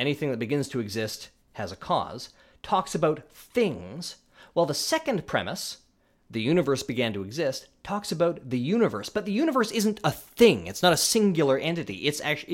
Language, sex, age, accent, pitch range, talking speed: English, male, 30-49, American, 125-185 Hz, 180 wpm